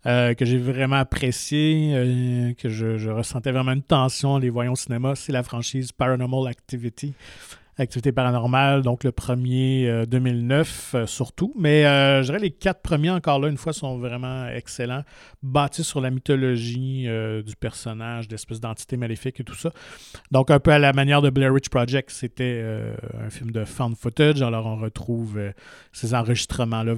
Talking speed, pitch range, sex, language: 185 wpm, 115-135 Hz, male, French